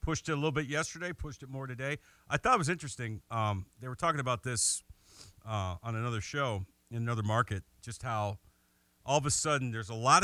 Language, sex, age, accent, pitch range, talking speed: English, male, 50-69, American, 105-135 Hz, 215 wpm